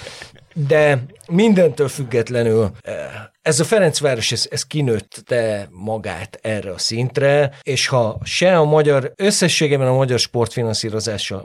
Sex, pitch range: male, 110-145 Hz